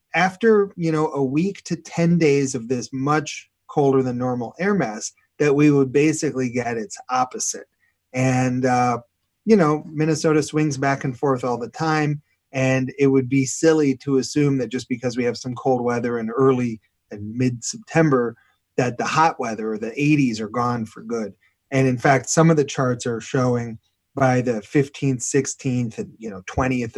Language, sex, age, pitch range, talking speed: English, male, 30-49, 125-155 Hz, 180 wpm